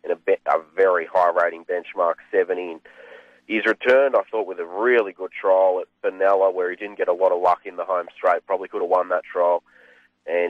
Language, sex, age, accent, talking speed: English, male, 30-49, Australian, 205 wpm